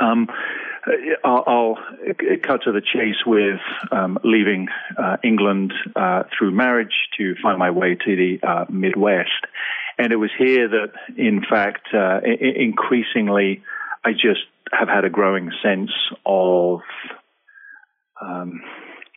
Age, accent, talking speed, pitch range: 40-59, British, 130 wpm, 95-115 Hz